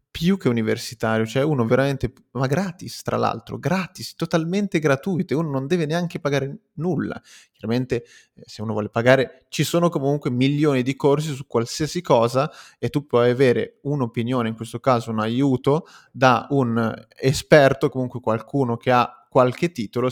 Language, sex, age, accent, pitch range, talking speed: Italian, male, 20-39, native, 120-135 Hz, 155 wpm